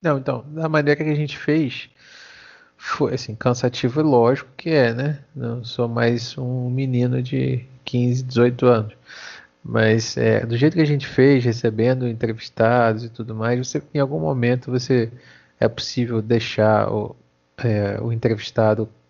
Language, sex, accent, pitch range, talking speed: Portuguese, male, Brazilian, 110-135 Hz, 155 wpm